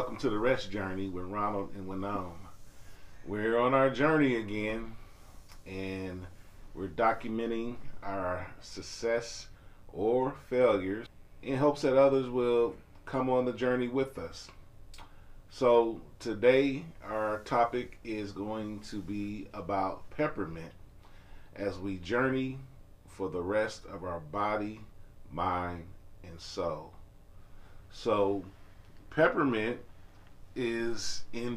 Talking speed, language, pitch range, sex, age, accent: 110 wpm, English, 95-115 Hz, male, 40-59, American